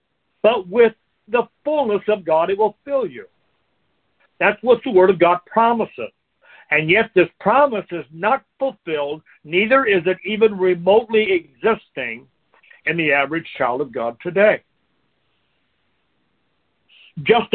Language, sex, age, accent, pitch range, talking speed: English, male, 60-79, American, 170-230 Hz, 130 wpm